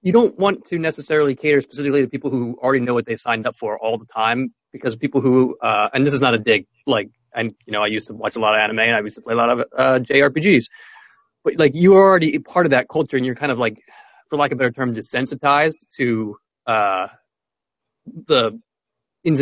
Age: 30-49